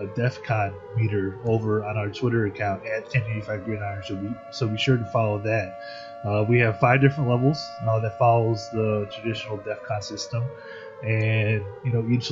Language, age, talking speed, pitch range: English, 20-39, 160 wpm, 110-125 Hz